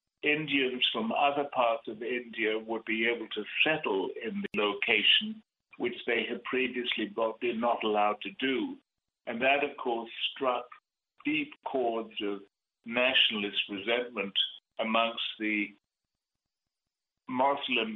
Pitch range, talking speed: 100-120 Hz, 120 wpm